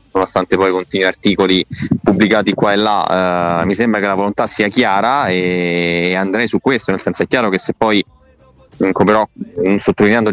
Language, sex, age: Italian, male, 20-39